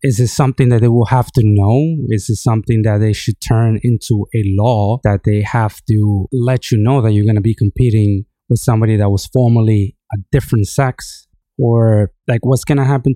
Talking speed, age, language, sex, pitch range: 210 wpm, 20-39, English, male, 105-130 Hz